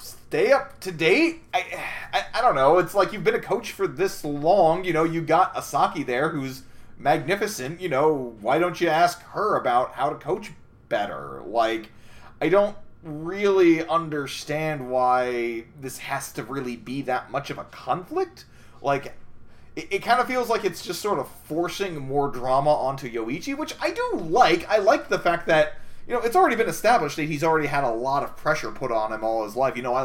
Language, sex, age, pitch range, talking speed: English, male, 30-49, 130-195 Hz, 200 wpm